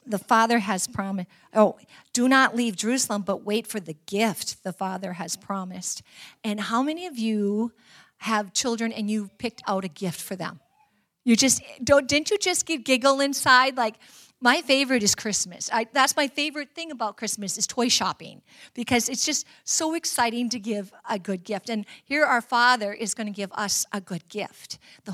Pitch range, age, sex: 205-260 Hz, 40-59, female